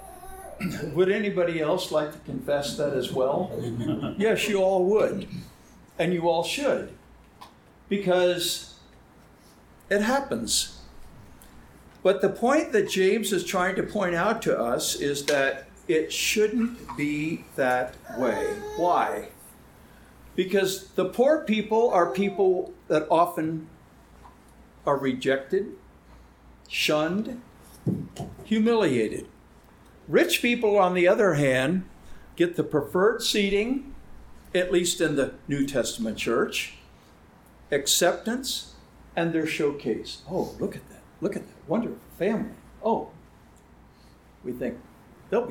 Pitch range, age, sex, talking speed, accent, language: 145-210 Hz, 60-79, male, 115 wpm, American, English